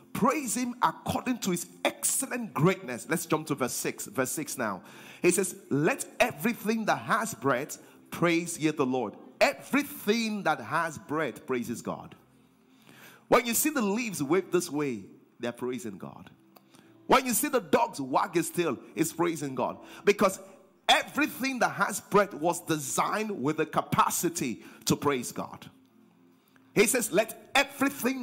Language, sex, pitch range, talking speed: English, male, 140-225 Hz, 150 wpm